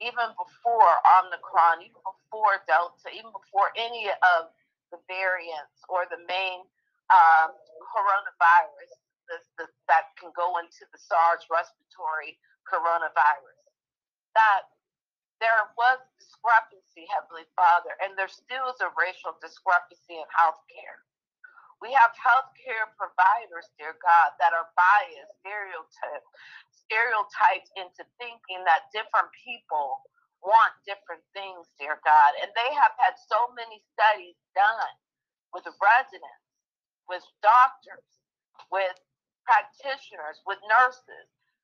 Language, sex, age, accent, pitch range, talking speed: English, female, 40-59, American, 170-235 Hz, 110 wpm